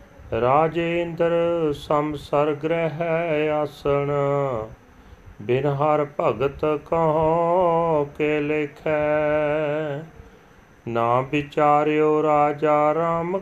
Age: 40-59